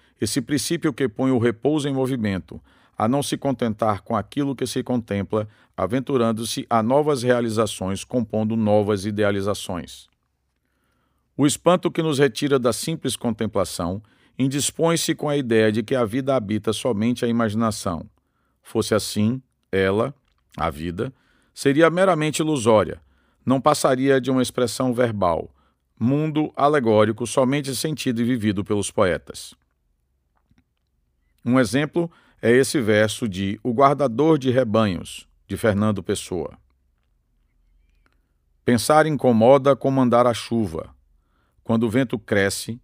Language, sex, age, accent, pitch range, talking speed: Portuguese, male, 50-69, Brazilian, 95-135 Hz, 125 wpm